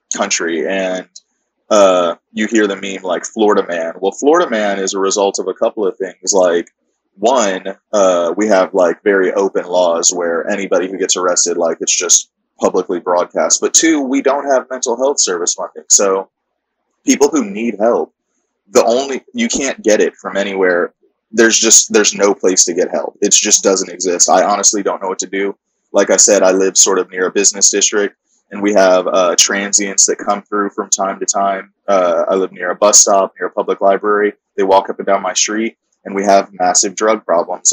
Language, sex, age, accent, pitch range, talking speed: English, male, 20-39, American, 95-110 Hz, 205 wpm